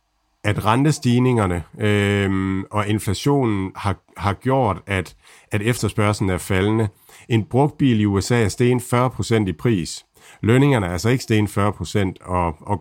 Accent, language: native, Danish